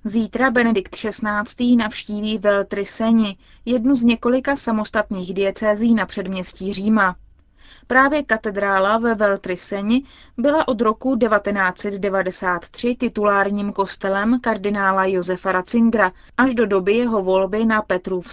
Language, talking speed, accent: Czech, 110 wpm, native